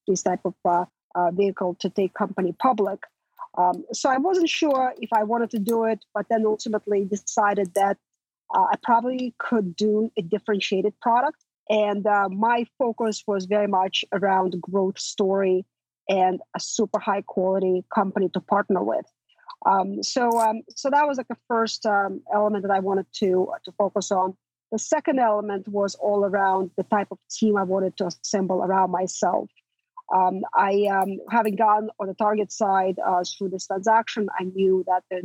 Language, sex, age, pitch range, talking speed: English, female, 40-59, 190-220 Hz, 175 wpm